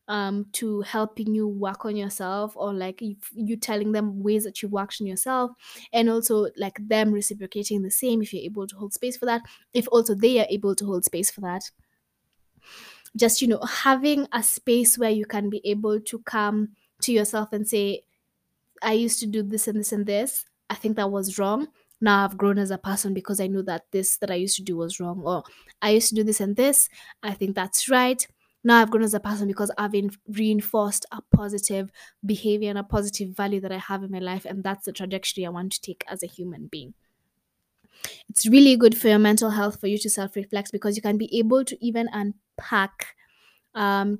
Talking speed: 215 wpm